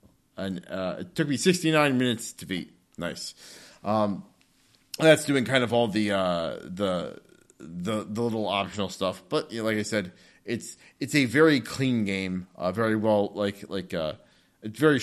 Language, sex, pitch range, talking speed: English, male, 95-120 Hz, 175 wpm